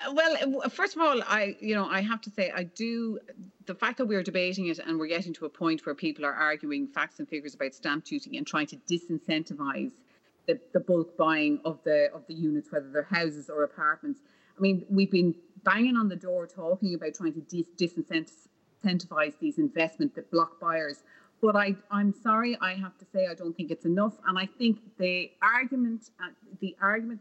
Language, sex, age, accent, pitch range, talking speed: English, female, 30-49, Irish, 170-210 Hz, 205 wpm